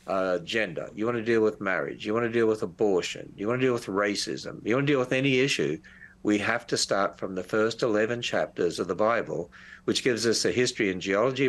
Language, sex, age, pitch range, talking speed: English, male, 60-79, 100-120 Hz, 240 wpm